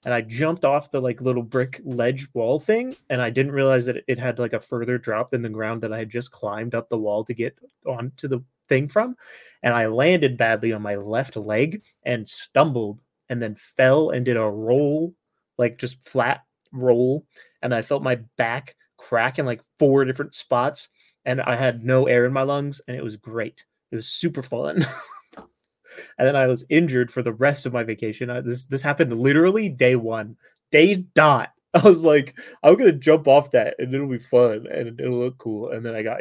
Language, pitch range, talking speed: English, 120-155 Hz, 210 wpm